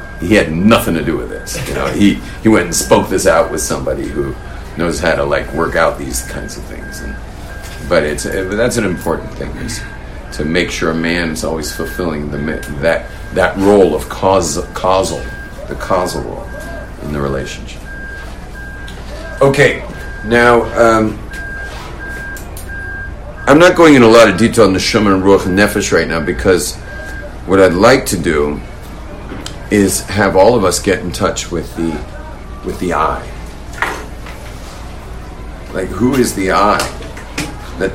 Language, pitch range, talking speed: English, 80-100 Hz, 165 wpm